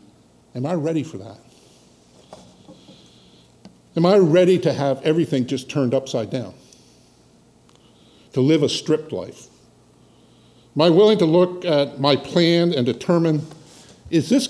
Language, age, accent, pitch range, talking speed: English, 50-69, American, 115-170 Hz, 130 wpm